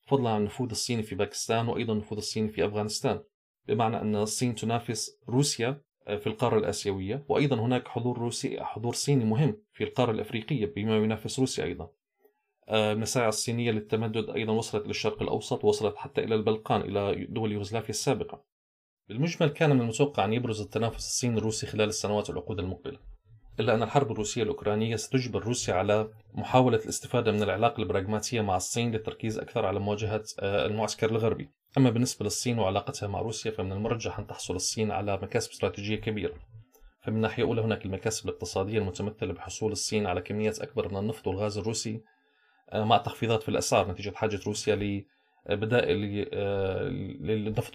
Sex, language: male, Arabic